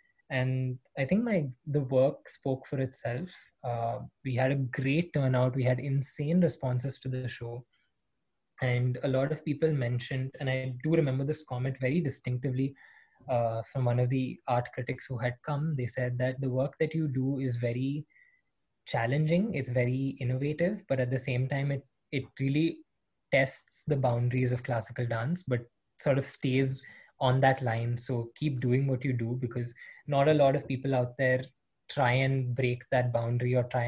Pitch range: 125-145 Hz